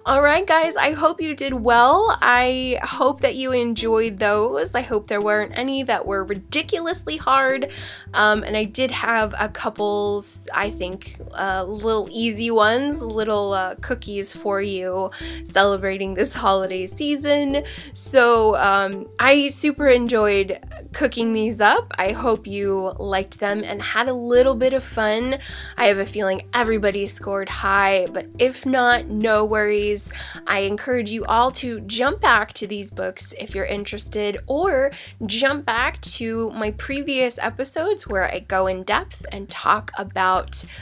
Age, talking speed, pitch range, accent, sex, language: 10-29, 155 wpm, 195-260 Hz, American, female, English